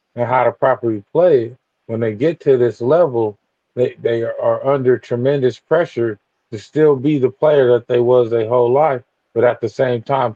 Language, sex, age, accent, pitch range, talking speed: English, male, 20-39, American, 120-140 Hz, 190 wpm